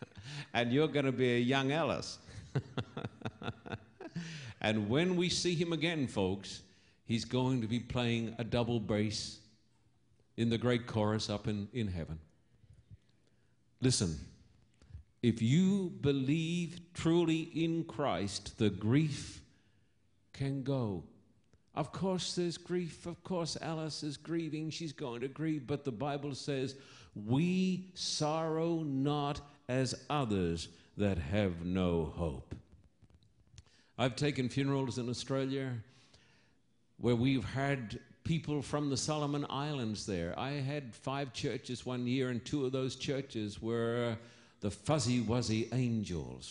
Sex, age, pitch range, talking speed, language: male, 50-69, 110-145 Hz, 125 wpm, English